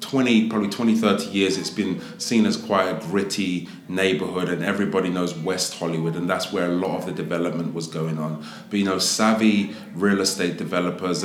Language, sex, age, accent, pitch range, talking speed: English, male, 30-49, British, 85-100 Hz, 190 wpm